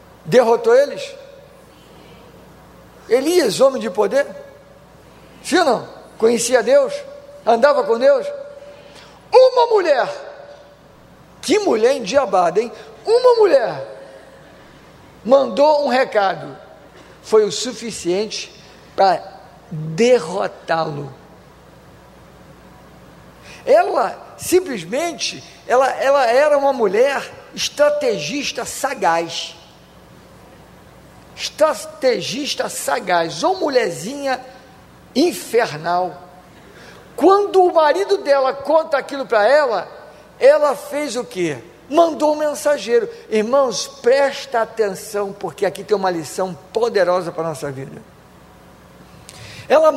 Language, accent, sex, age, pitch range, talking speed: Portuguese, Brazilian, male, 50-69, 190-300 Hz, 85 wpm